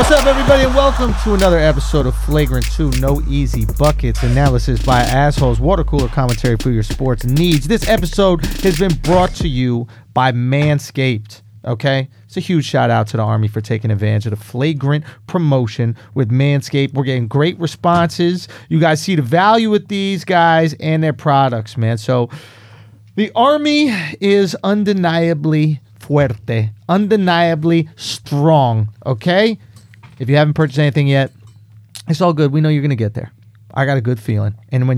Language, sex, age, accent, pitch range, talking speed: English, male, 30-49, American, 120-170 Hz, 170 wpm